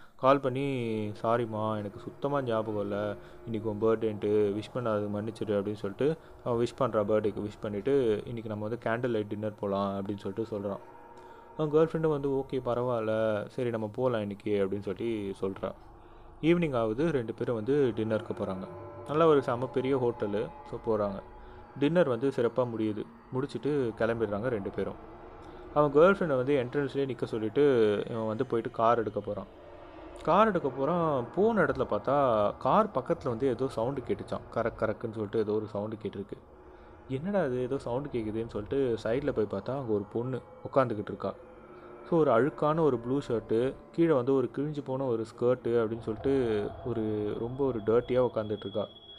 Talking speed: 160 wpm